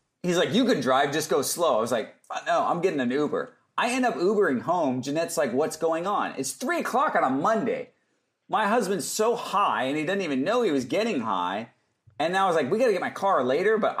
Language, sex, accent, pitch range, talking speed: English, male, American, 145-220 Hz, 245 wpm